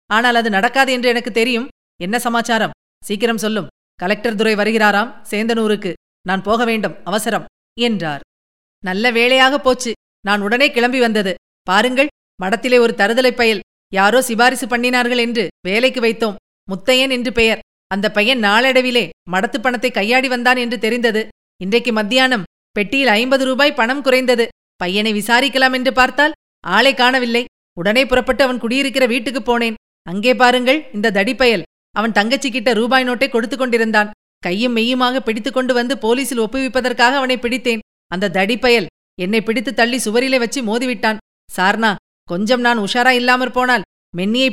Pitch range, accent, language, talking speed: 210-255 Hz, native, Tamil, 135 wpm